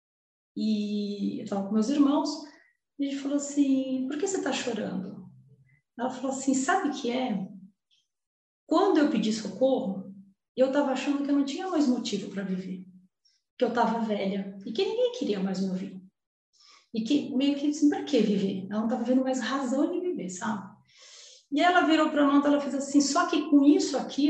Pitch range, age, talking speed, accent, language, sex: 215-295 Hz, 30-49, 195 wpm, Brazilian, Portuguese, female